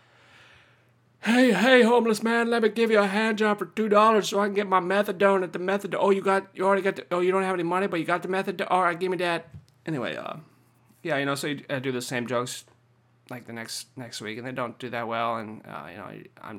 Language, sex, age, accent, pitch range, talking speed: English, male, 30-49, American, 120-160 Hz, 265 wpm